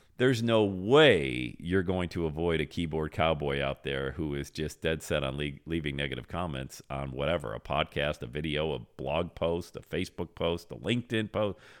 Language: English